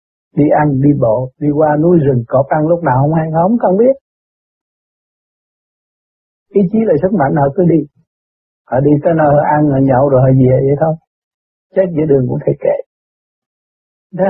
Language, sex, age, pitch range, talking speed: Vietnamese, male, 60-79, 130-175 Hz, 190 wpm